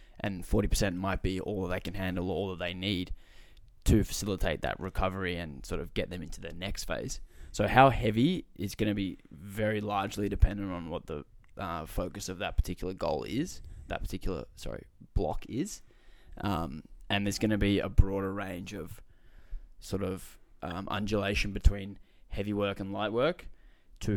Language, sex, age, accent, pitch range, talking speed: English, male, 20-39, Australian, 95-105 Hz, 180 wpm